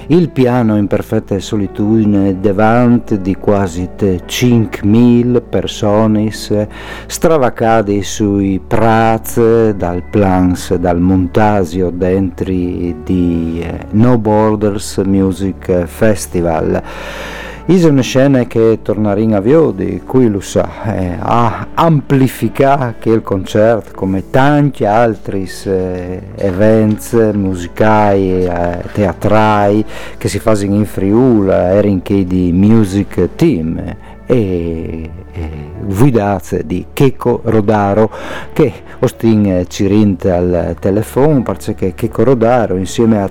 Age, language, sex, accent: 50-69, Italian, male, native